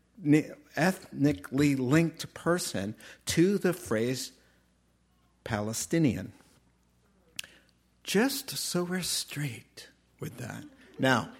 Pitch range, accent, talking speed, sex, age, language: 105-150 Hz, American, 75 wpm, male, 60-79, English